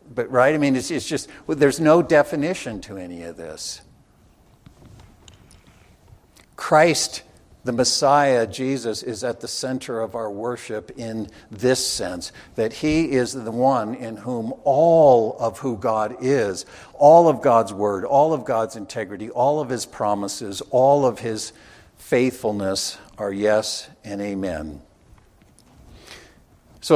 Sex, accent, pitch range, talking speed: male, American, 110-140 Hz, 135 wpm